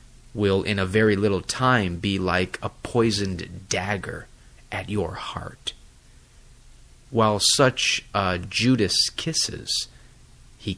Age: 30-49